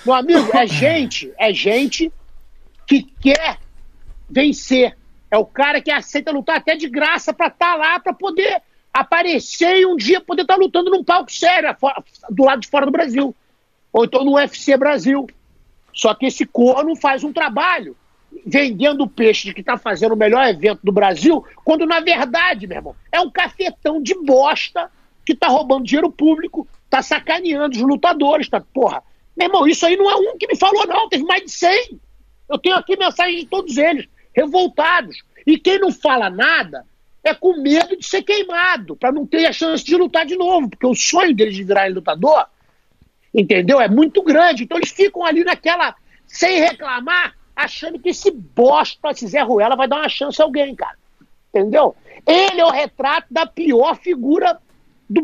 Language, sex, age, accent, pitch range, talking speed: Portuguese, male, 50-69, Brazilian, 275-350 Hz, 185 wpm